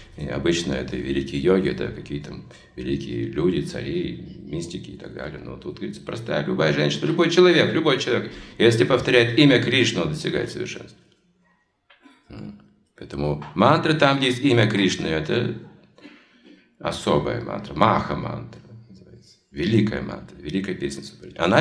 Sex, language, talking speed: male, Russian, 130 wpm